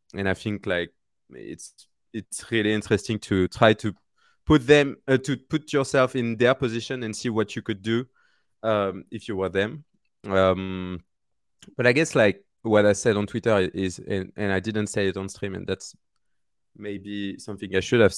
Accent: French